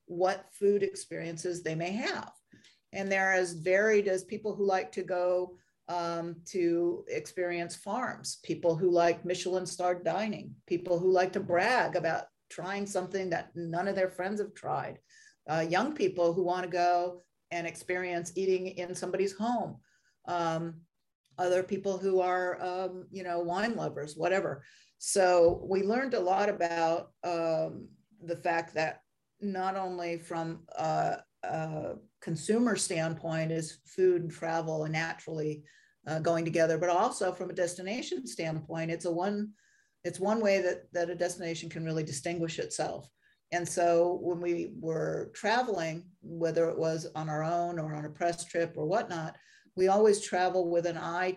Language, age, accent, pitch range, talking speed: English, 50-69, American, 165-190 Hz, 160 wpm